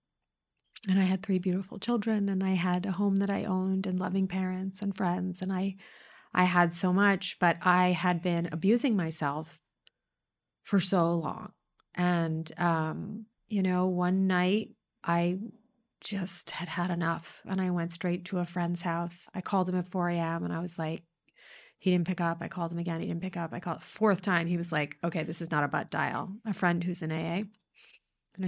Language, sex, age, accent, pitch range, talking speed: English, female, 30-49, American, 170-200 Hz, 200 wpm